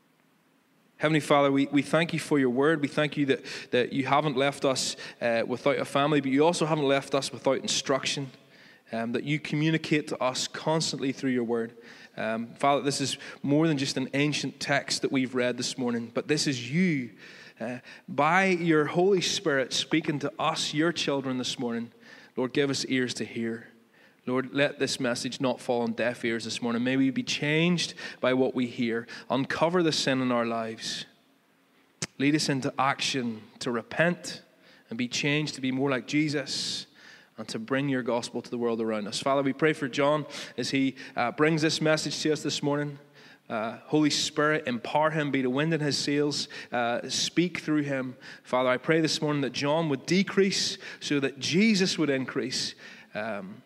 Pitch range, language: 125-155 Hz, English